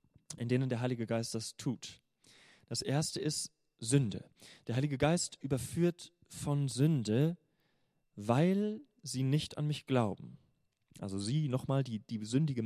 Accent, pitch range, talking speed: German, 115-155 Hz, 140 wpm